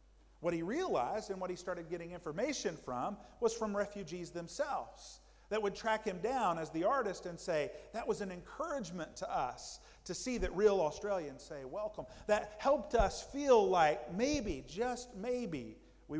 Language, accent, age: English, American, 50-69